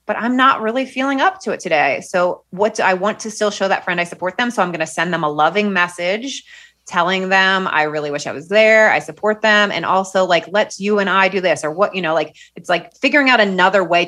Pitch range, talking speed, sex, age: 175-220 Hz, 260 wpm, female, 30-49